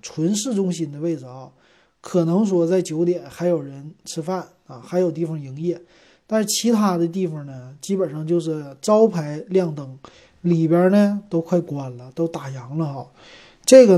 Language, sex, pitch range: Chinese, male, 155-195 Hz